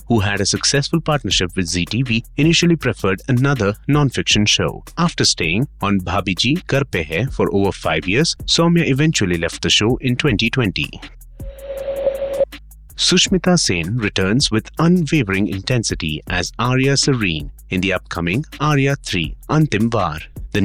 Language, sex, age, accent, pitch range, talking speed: English, male, 30-49, Indian, 95-145 Hz, 130 wpm